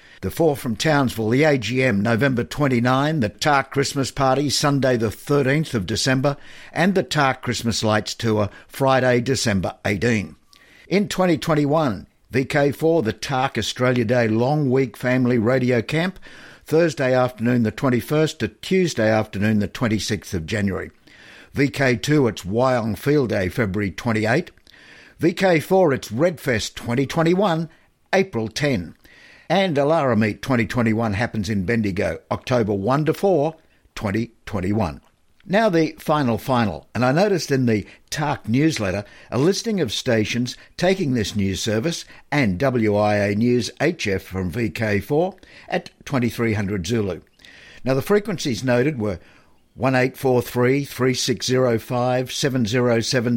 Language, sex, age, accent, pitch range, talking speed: English, male, 60-79, Australian, 110-145 Hz, 120 wpm